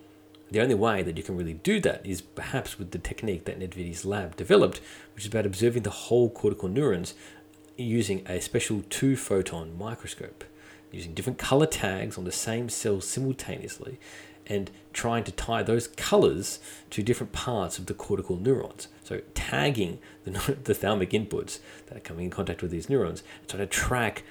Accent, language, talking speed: Australian, English, 170 wpm